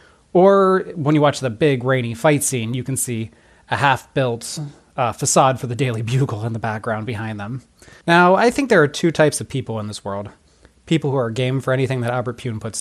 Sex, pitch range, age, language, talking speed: male, 115-145 Hz, 30-49, English, 215 wpm